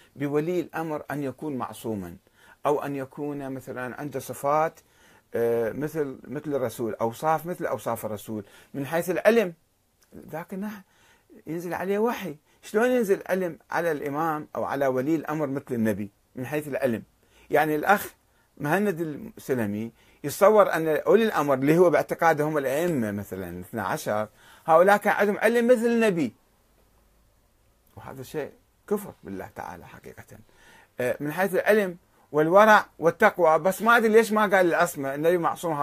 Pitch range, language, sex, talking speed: 135-195 Hz, Arabic, male, 135 wpm